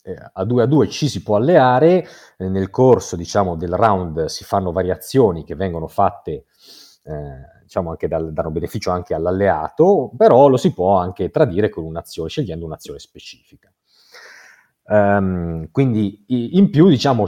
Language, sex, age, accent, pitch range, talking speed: Italian, male, 30-49, native, 85-110 Hz, 150 wpm